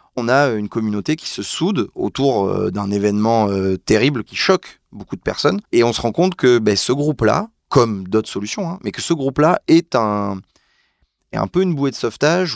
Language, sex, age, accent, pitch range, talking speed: French, male, 30-49, French, 100-155 Hz, 200 wpm